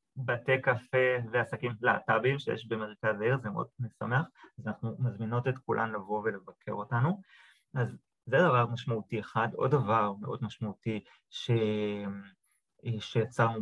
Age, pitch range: 20-39, 110-130 Hz